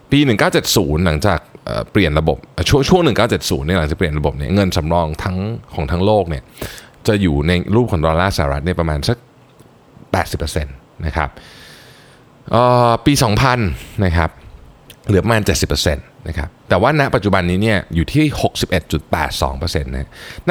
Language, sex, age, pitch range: Thai, male, 20-39, 80-115 Hz